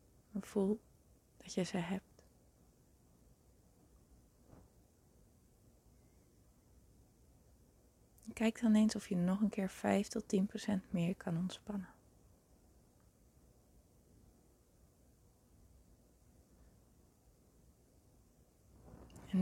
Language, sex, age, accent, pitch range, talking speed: Dutch, female, 20-39, Dutch, 185-210 Hz, 60 wpm